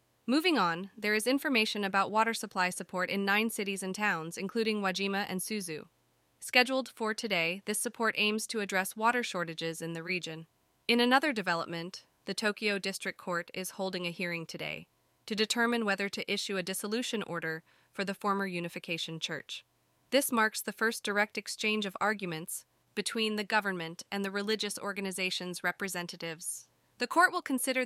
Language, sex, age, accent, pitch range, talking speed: English, female, 20-39, American, 180-230 Hz, 165 wpm